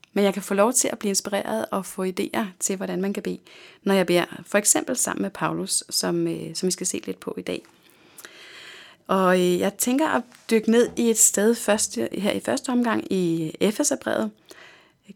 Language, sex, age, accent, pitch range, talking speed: Danish, female, 30-49, native, 175-230 Hz, 200 wpm